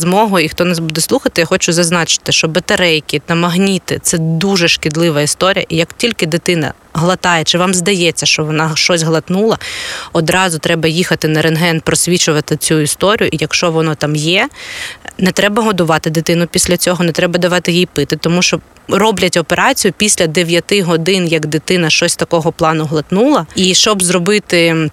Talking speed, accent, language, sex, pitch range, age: 170 wpm, native, Ukrainian, female, 160-190 Hz, 20-39